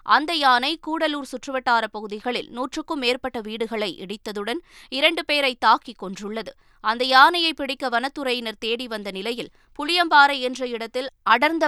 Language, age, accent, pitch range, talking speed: Tamil, 20-39, native, 220-275 Hz, 125 wpm